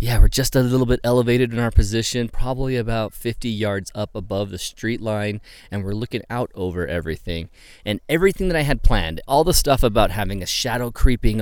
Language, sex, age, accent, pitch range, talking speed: English, male, 30-49, American, 100-125 Hz, 205 wpm